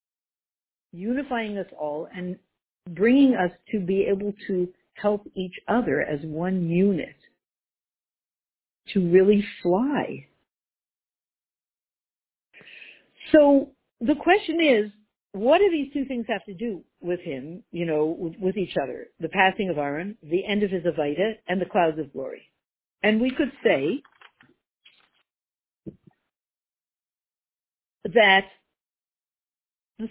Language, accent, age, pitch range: English, American, 60-79, 170-235 Hz